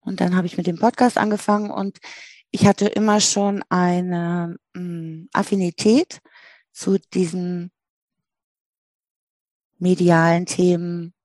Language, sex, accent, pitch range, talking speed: German, female, German, 170-200 Hz, 100 wpm